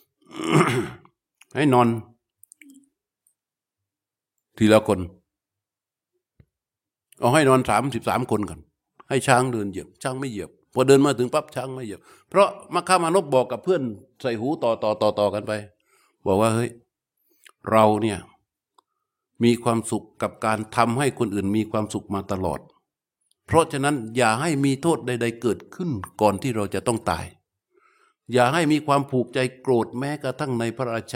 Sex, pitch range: male, 110-140 Hz